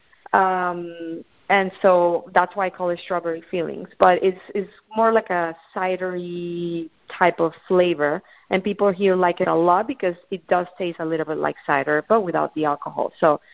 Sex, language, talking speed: female, English, 180 wpm